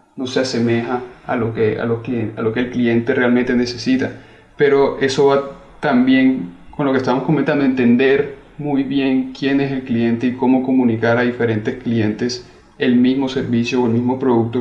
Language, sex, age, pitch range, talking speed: Spanish, male, 30-49, 125-140 Hz, 185 wpm